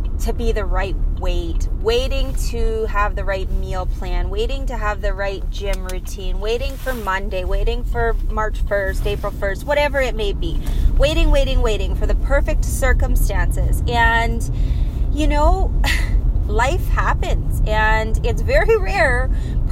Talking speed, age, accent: 145 wpm, 20-39, American